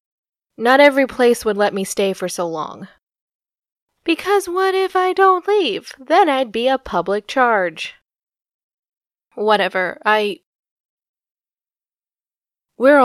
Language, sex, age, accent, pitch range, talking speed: English, female, 20-39, American, 190-230 Hz, 115 wpm